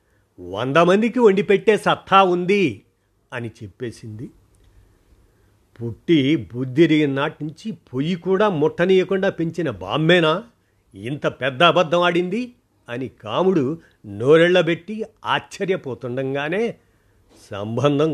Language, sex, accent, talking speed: Telugu, male, native, 85 wpm